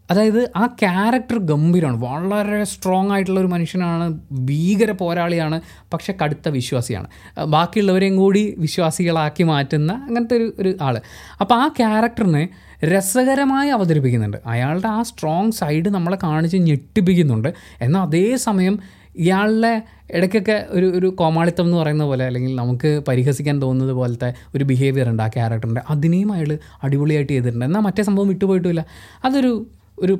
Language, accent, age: Malayalam, native, 20-39